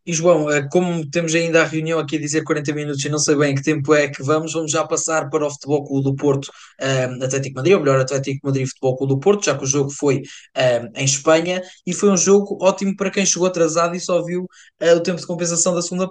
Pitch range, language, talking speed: 150-180 Hz, Portuguese, 255 wpm